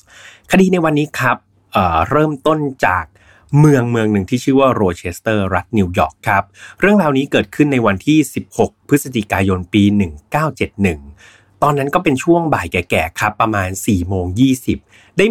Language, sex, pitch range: Thai, male, 100-150 Hz